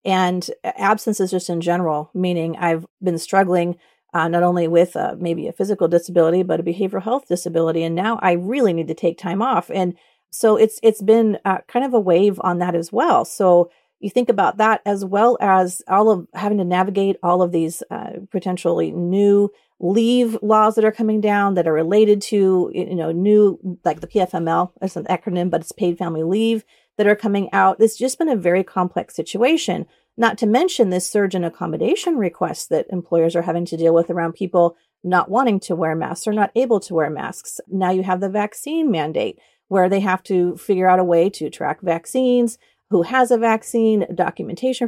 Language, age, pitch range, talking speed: English, 40-59, 175-220 Hz, 205 wpm